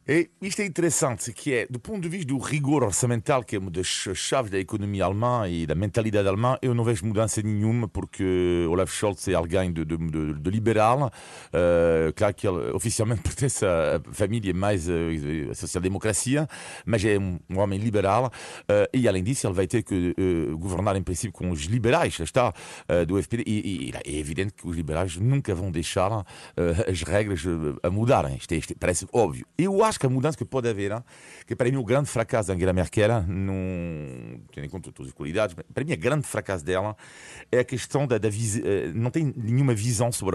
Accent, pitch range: French, 90-125 Hz